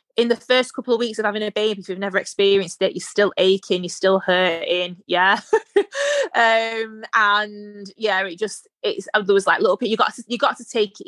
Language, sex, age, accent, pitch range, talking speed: English, female, 20-39, British, 185-250 Hz, 225 wpm